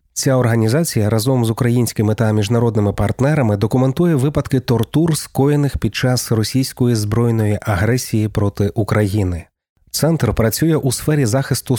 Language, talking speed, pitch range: Ukrainian, 120 wpm, 110-130 Hz